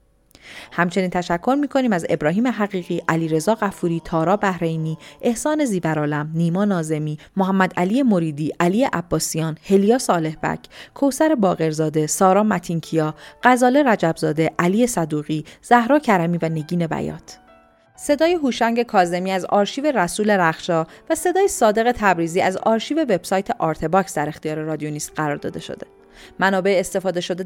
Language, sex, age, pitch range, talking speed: Persian, female, 30-49, 165-225 Hz, 135 wpm